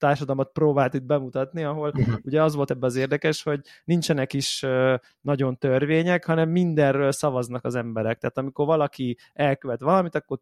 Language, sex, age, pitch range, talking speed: Hungarian, male, 20-39, 125-150 Hz, 155 wpm